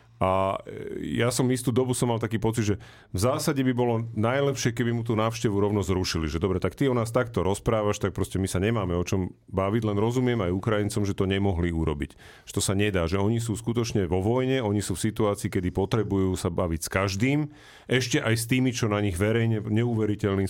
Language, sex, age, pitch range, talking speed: Slovak, male, 40-59, 100-130 Hz, 215 wpm